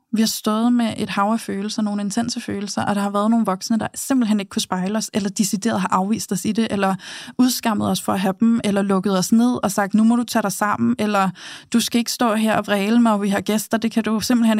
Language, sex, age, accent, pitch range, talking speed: Danish, female, 20-39, native, 200-230 Hz, 270 wpm